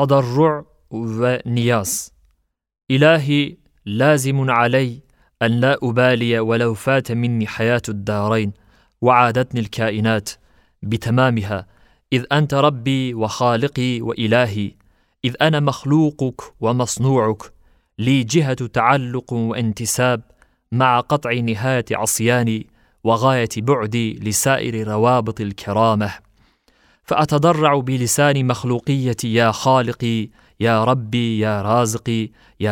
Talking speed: 90 wpm